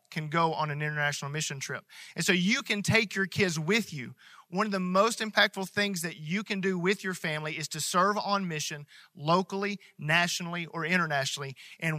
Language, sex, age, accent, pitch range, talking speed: English, male, 40-59, American, 150-185 Hz, 195 wpm